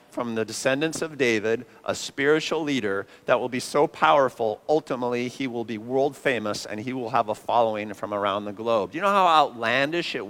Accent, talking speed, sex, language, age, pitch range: American, 205 wpm, male, English, 50-69, 110-135 Hz